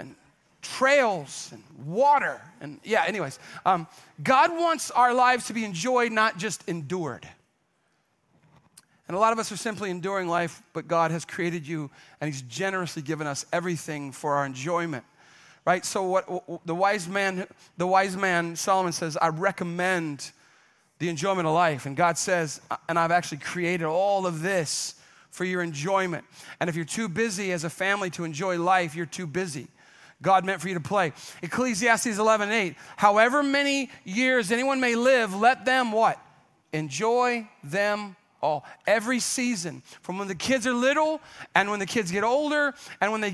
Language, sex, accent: English, male, American